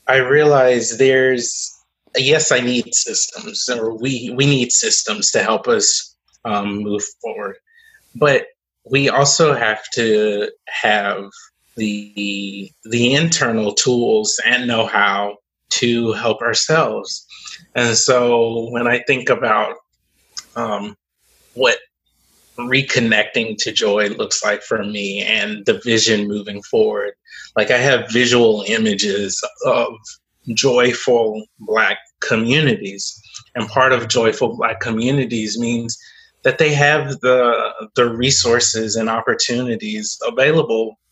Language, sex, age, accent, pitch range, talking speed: English, male, 30-49, American, 110-140 Hz, 115 wpm